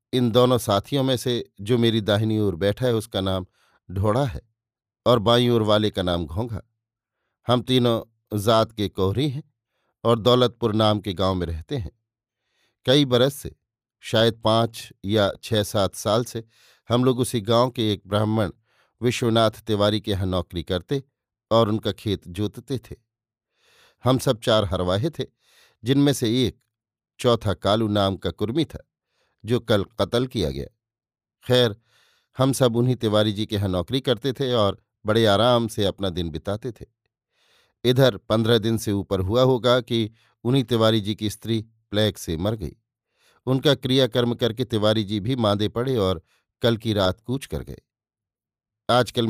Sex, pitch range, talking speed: male, 105-120 Hz, 165 wpm